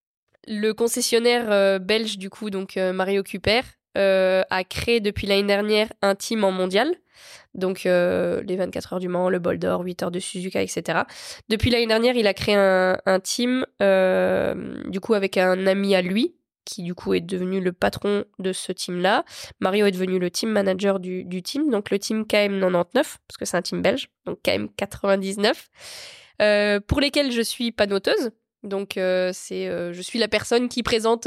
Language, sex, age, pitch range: French, female, 20-39, 185-220 Hz